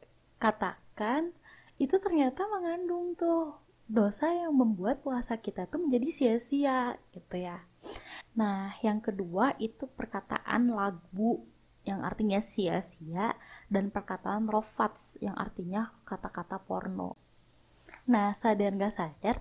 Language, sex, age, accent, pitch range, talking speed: Indonesian, female, 20-39, native, 200-255 Hz, 110 wpm